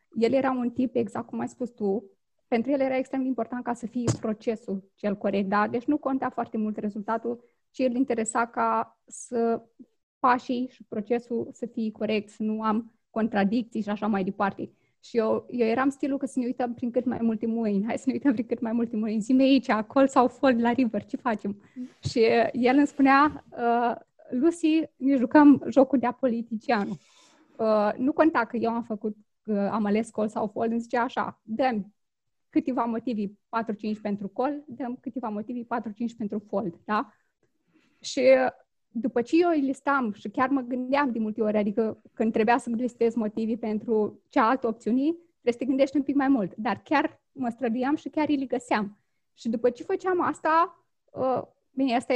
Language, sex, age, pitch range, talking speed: Romanian, female, 20-39, 220-270 Hz, 190 wpm